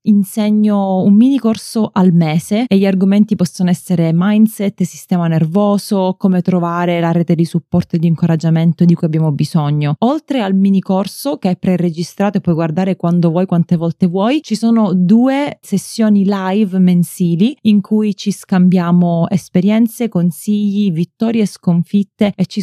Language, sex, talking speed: Italian, female, 155 wpm